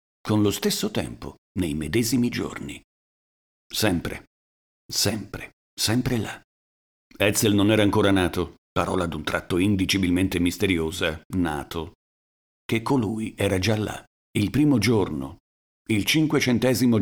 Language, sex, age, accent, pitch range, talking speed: Italian, male, 50-69, native, 85-115 Hz, 115 wpm